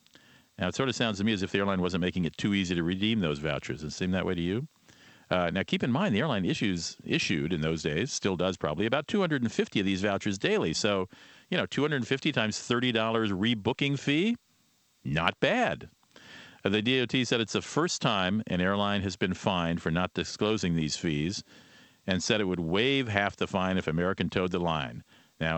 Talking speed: 210 wpm